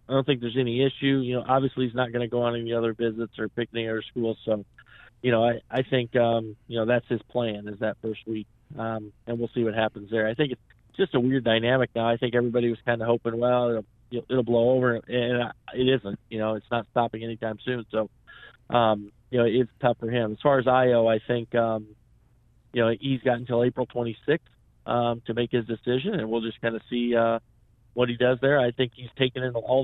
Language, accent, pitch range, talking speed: English, American, 115-125 Hz, 240 wpm